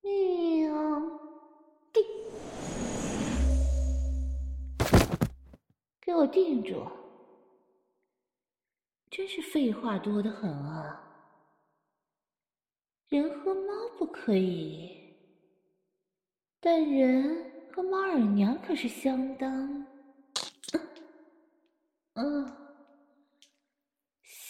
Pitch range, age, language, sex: 250-315 Hz, 30-49, Chinese, female